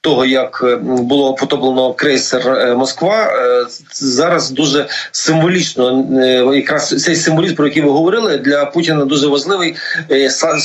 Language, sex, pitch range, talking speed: Ukrainian, male, 140-165 Hz, 115 wpm